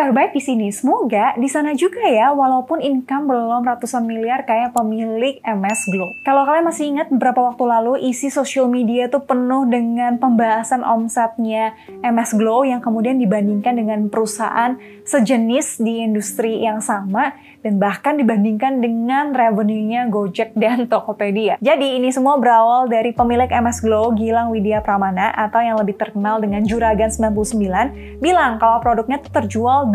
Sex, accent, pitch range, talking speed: female, native, 220-265 Hz, 150 wpm